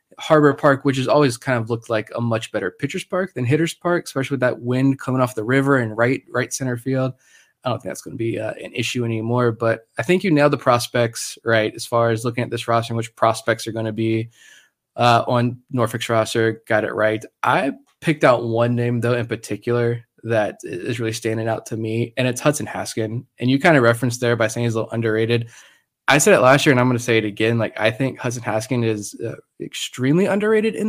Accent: American